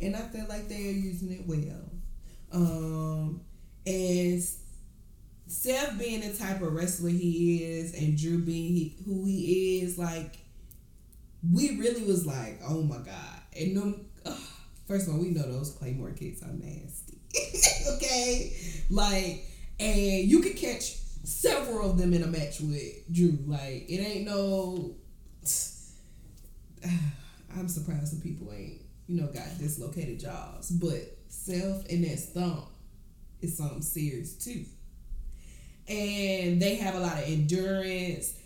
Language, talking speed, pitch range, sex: English, 145 wpm, 160-195 Hz, female